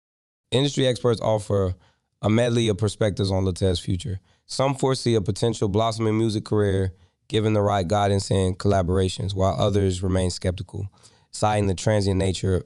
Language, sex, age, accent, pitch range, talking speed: English, male, 20-39, American, 95-110 Hz, 145 wpm